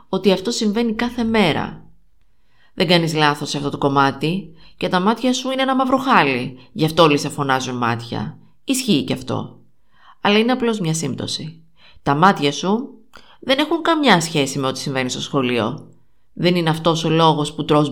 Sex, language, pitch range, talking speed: female, Greek, 145-210 Hz, 175 wpm